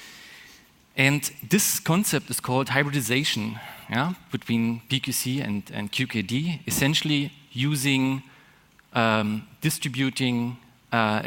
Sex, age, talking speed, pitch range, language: male, 40-59, 90 wpm, 110-140 Hz, English